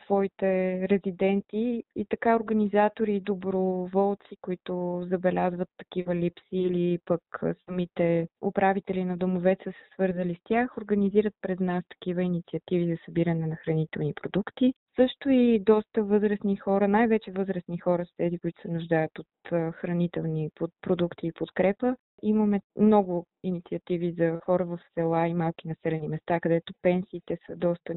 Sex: female